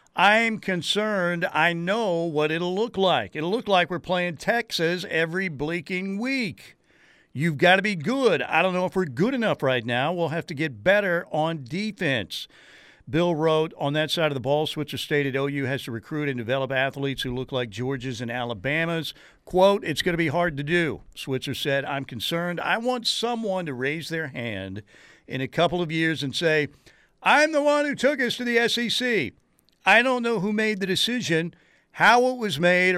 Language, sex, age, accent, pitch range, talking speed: English, male, 50-69, American, 140-185 Hz, 195 wpm